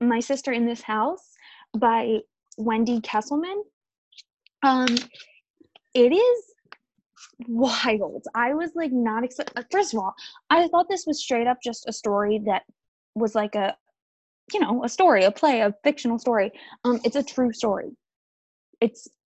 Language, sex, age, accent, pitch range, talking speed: English, female, 10-29, American, 225-290 Hz, 150 wpm